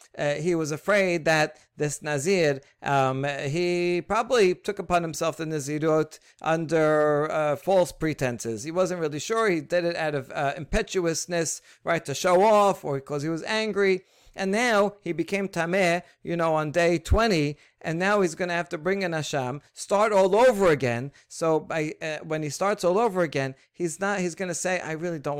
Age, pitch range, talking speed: 40-59, 140-180 Hz, 190 wpm